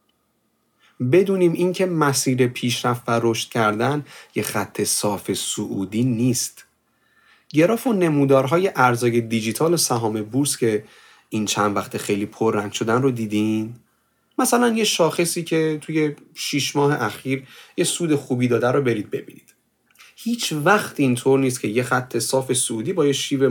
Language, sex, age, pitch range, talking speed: Persian, male, 30-49, 115-155 Hz, 145 wpm